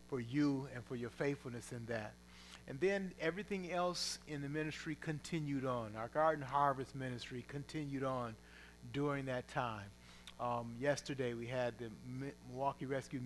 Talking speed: 150 wpm